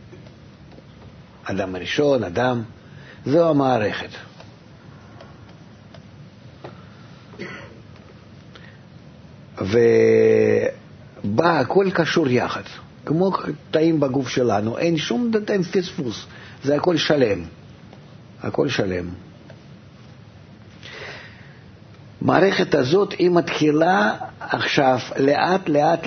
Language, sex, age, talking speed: Hebrew, male, 50-69, 65 wpm